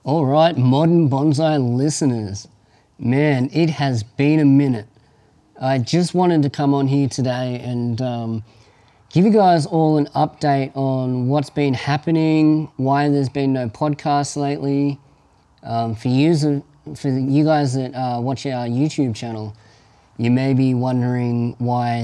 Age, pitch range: 20-39, 115-140 Hz